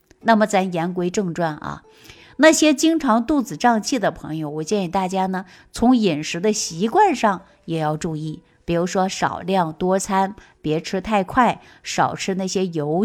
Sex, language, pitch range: female, Chinese, 170-235 Hz